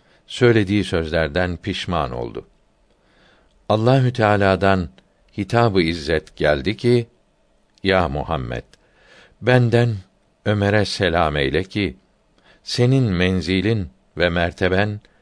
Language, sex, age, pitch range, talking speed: Turkish, male, 60-79, 85-105 Hz, 85 wpm